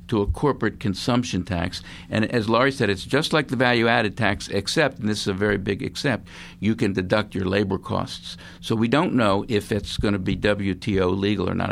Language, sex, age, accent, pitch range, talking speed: English, male, 60-79, American, 90-110 Hz, 215 wpm